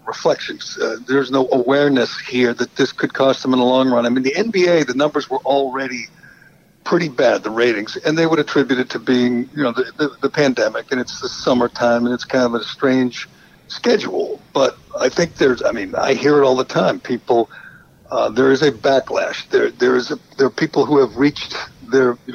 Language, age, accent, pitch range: English, 60-79, American, 130-165 Hz